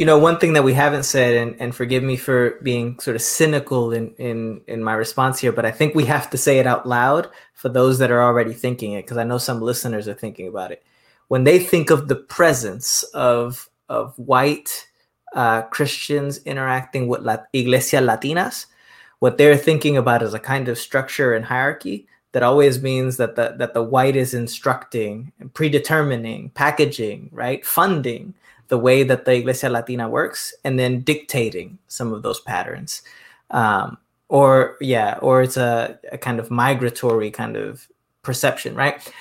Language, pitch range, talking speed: English, 120-140 Hz, 180 wpm